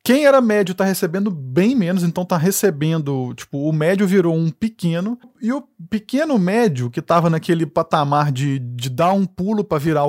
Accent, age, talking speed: Brazilian, 20-39, 185 wpm